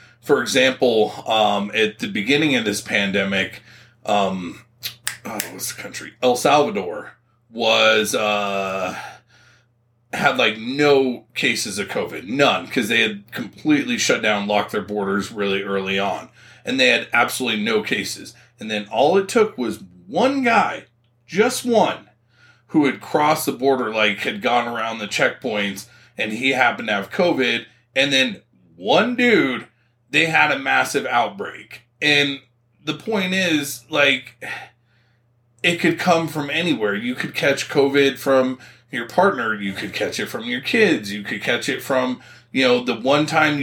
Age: 30-49